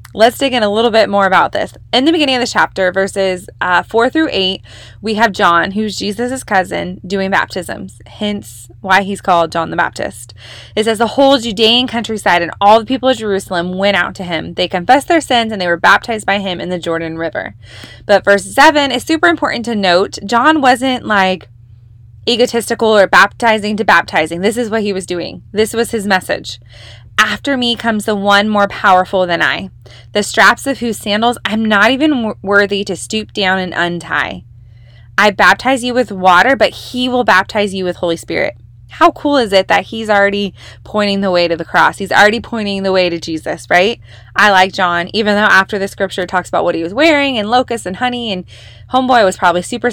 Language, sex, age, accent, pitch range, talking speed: English, female, 20-39, American, 175-230 Hz, 205 wpm